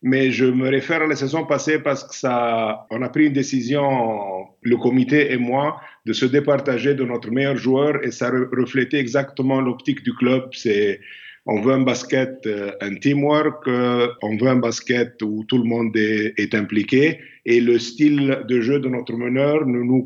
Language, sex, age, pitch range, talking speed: French, male, 50-69, 120-145 Hz, 180 wpm